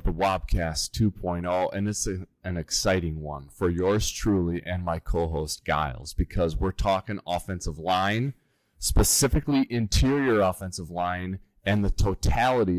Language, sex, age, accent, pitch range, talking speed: English, male, 30-49, American, 90-115 Hz, 125 wpm